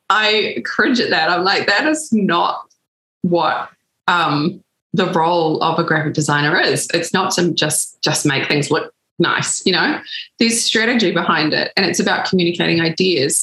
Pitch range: 160-185 Hz